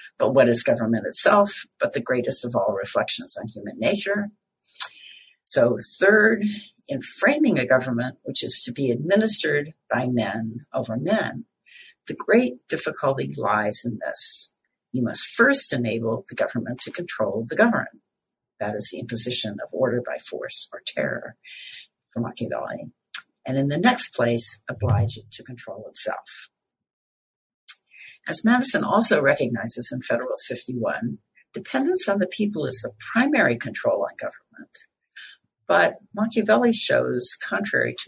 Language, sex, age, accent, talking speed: English, female, 60-79, American, 140 wpm